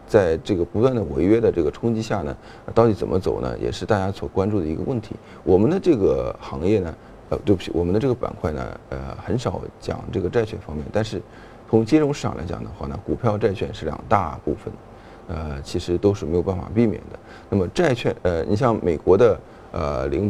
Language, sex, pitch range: Chinese, male, 90-115 Hz